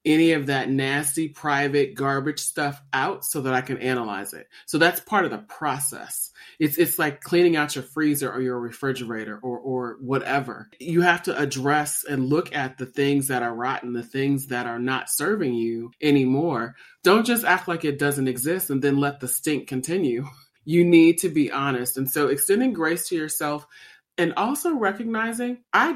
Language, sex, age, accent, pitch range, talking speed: English, male, 30-49, American, 130-170 Hz, 185 wpm